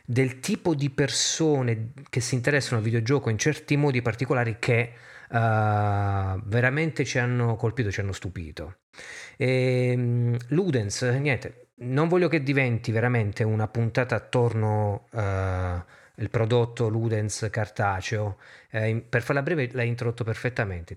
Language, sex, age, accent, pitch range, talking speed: Italian, male, 30-49, native, 110-140 Hz, 130 wpm